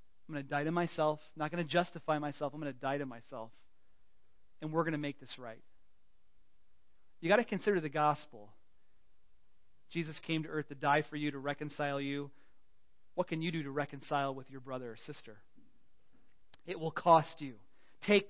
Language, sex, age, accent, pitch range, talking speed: English, male, 30-49, American, 115-170 Hz, 185 wpm